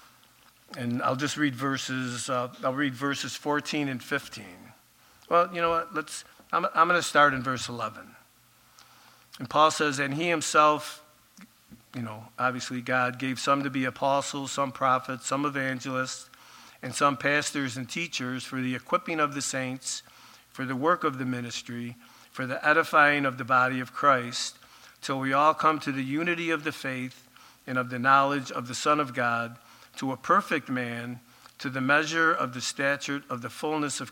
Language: English